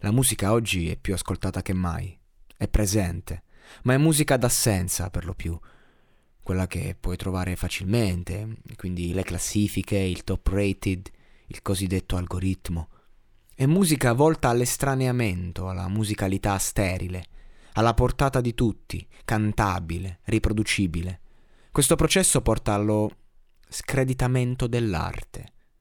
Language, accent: Italian, native